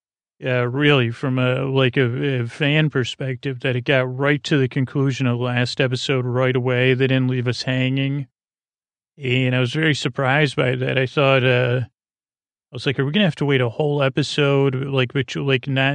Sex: male